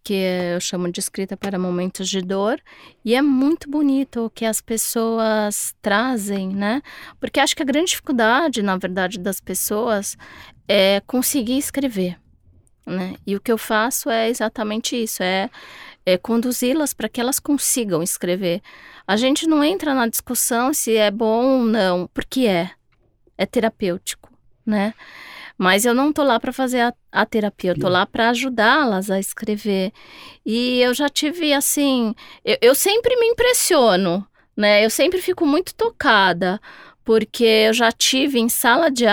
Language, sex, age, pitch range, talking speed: Portuguese, female, 20-39, 195-255 Hz, 160 wpm